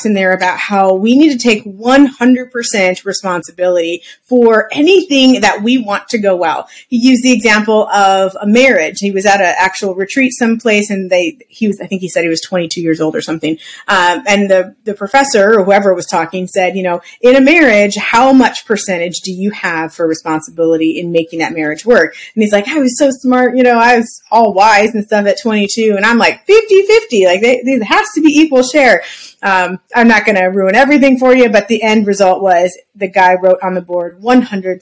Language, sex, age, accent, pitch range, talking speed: English, female, 30-49, American, 185-250 Hz, 215 wpm